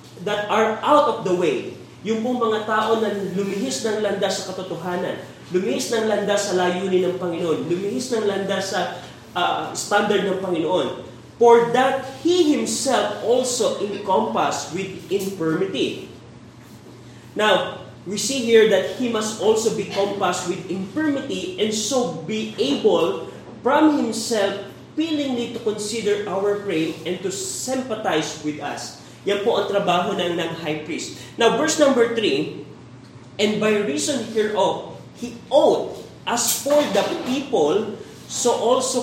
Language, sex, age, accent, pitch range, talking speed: Filipino, male, 20-39, native, 185-225 Hz, 140 wpm